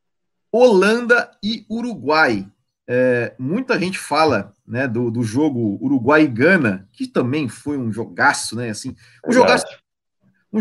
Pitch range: 125-185 Hz